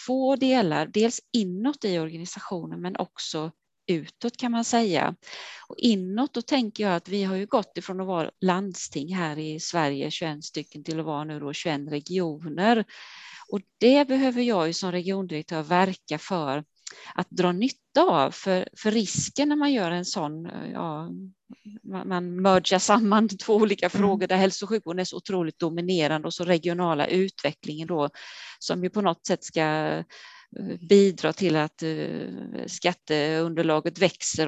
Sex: female